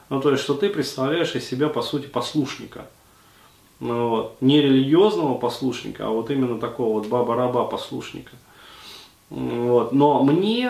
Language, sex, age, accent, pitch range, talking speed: Russian, male, 30-49, native, 120-145 Hz, 140 wpm